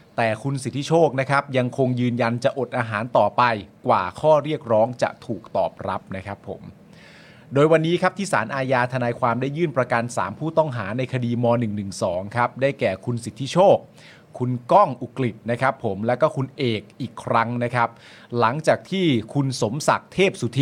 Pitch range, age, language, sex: 115-140 Hz, 30-49, Thai, male